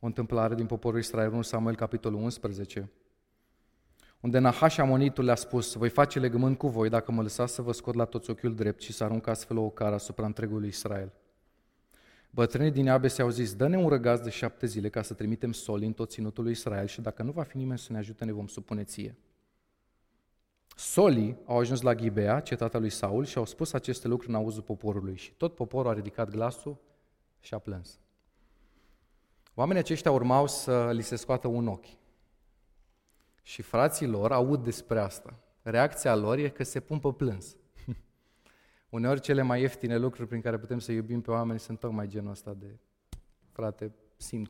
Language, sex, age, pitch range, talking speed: Romanian, male, 30-49, 110-125 Hz, 185 wpm